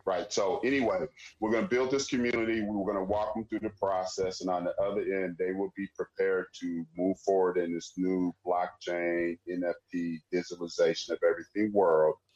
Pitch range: 85-110 Hz